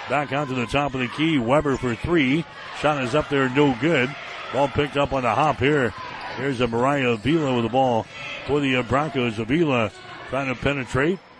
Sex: male